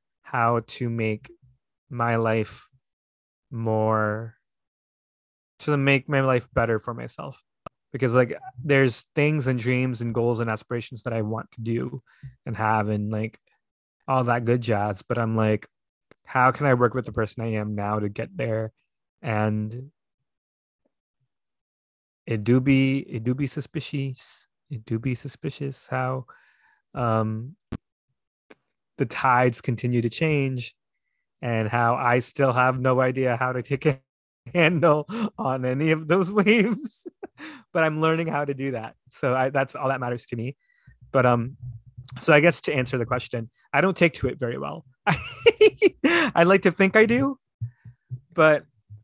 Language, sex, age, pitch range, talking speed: English, male, 20-39, 115-140 Hz, 155 wpm